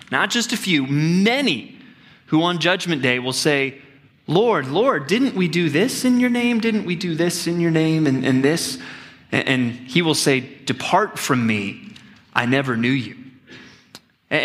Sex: male